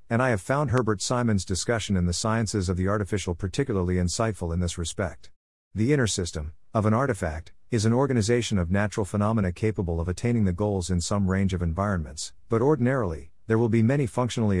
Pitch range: 90-115 Hz